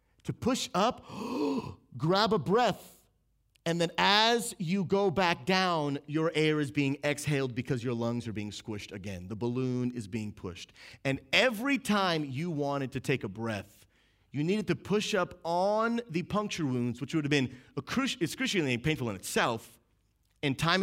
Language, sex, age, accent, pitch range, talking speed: English, male, 30-49, American, 110-175 Hz, 165 wpm